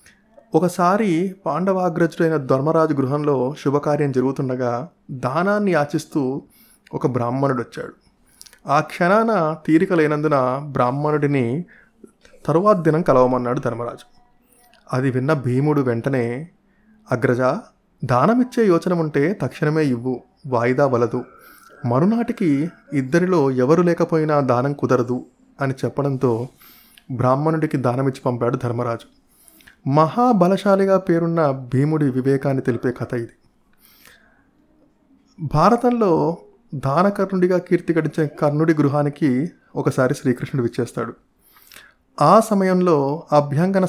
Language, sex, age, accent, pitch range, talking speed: Telugu, male, 20-39, native, 130-175 Hz, 85 wpm